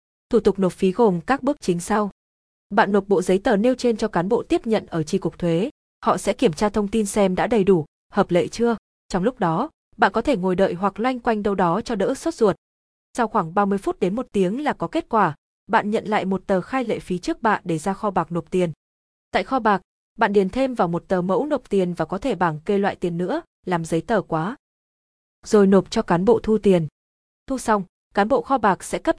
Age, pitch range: 20-39, 180-230 Hz